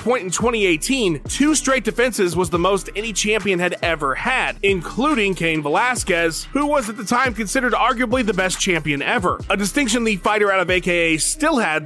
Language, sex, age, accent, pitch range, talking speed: English, male, 30-49, American, 160-215 Hz, 185 wpm